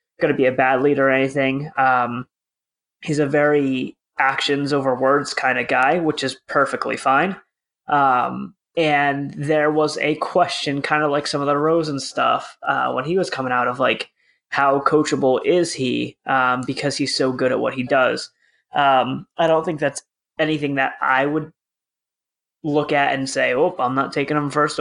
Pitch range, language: 135-160 Hz, English